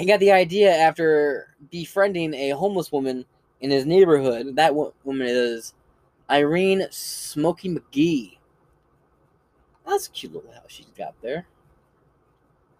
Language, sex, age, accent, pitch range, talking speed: English, male, 20-39, American, 140-185 Hz, 120 wpm